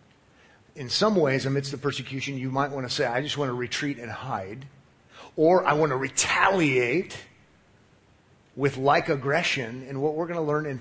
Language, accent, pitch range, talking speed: English, American, 125-155 Hz, 185 wpm